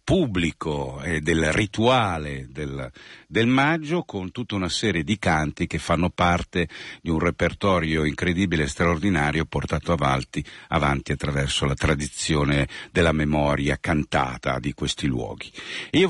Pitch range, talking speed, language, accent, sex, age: 75-105 Hz, 130 wpm, Italian, native, male, 50-69